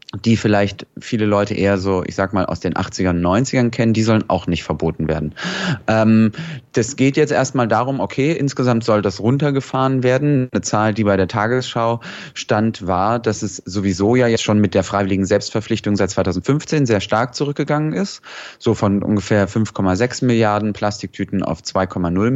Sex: male